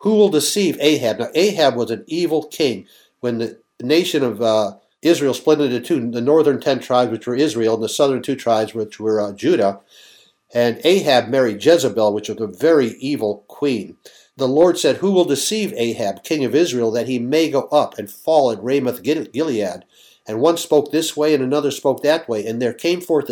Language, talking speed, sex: English, 200 wpm, male